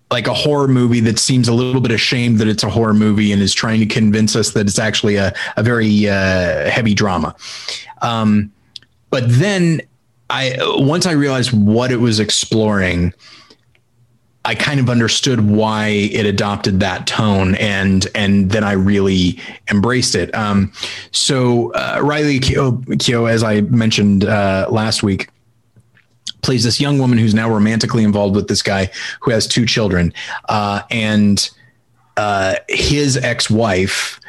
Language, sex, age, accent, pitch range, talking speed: English, male, 30-49, American, 100-120 Hz, 155 wpm